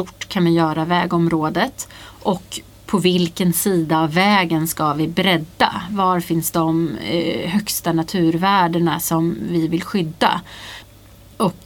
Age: 30-49